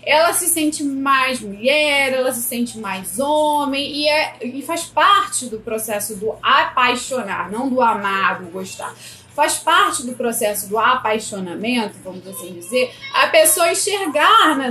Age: 20-39